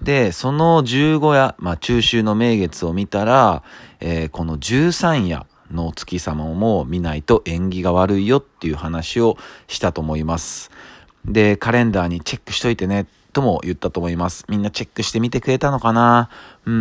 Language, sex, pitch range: Japanese, male, 85-120 Hz